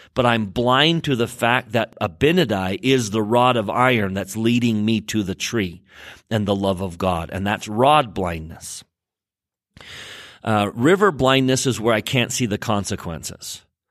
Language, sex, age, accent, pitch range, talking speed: English, male, 40-59, American, 100-130 Hz, 165 wpm